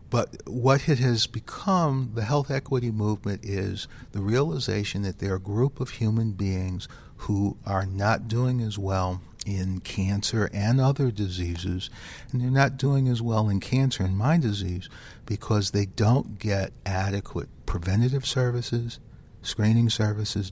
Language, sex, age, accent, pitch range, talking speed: English, male, 60-79, American, 100-120 Hz, 145 wpm